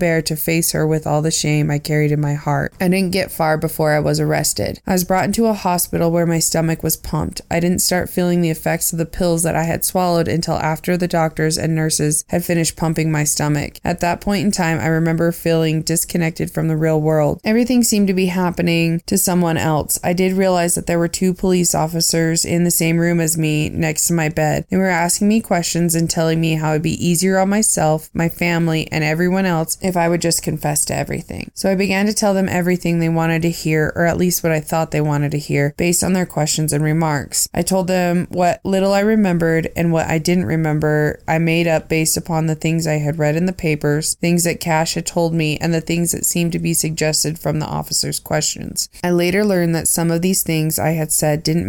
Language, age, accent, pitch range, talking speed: English, 20-39, American, 155-175 Hz, 240 wpm